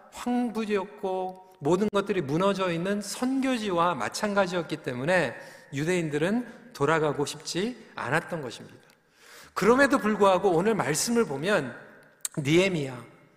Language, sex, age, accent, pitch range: Korean, male, 40-59, native, 175-235 Hz